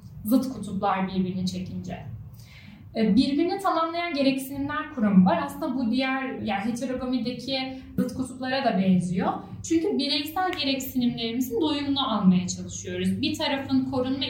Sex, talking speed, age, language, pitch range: female, 115 wpm, 10-29, Turkish, 210-295 Hz